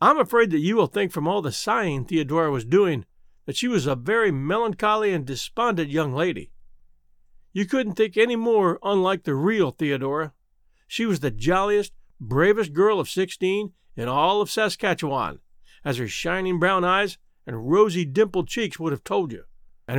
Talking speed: 175 wpm